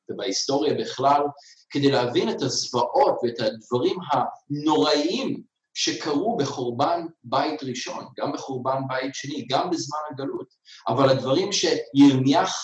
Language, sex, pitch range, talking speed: Hebrew, male, 130-185 Hz, 110 wpm